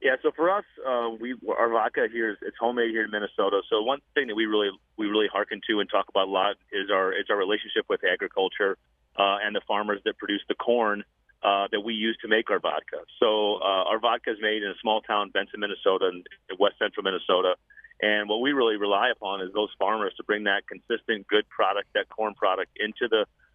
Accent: American